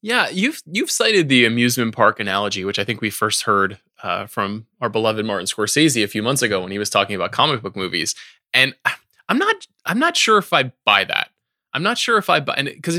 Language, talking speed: English, 230 wpm